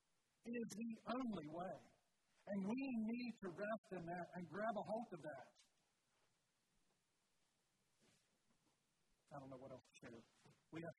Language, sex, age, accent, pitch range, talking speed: English, male, 50-69, American, 140-180 Hz, 140 wpm